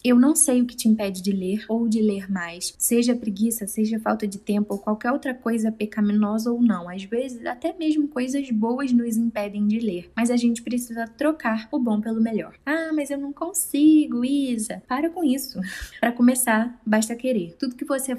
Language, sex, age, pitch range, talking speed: Portuguese, female, 10-29, 205-240 Hz, 200 wpm